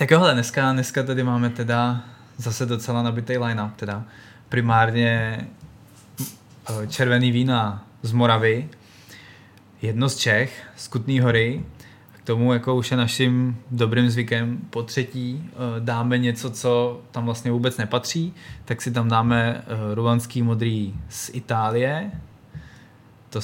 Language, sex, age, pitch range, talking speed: Czech, male, 20-39, 115-130 Hz, 130 wpm